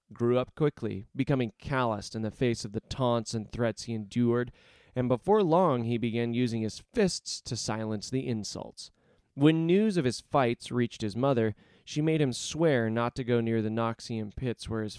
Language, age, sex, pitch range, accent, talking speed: English, 30-49, male, 110-130 Hz, American, 190 wpm